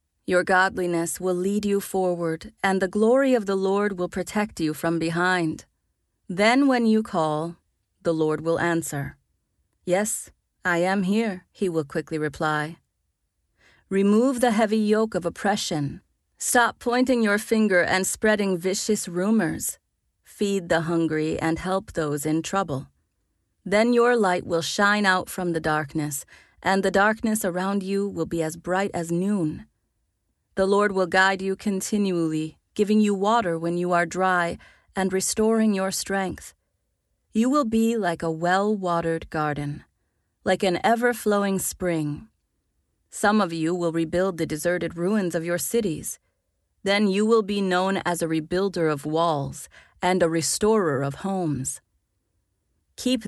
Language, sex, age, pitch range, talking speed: English, female, 40-59, 160-205 Hz, 145 wpm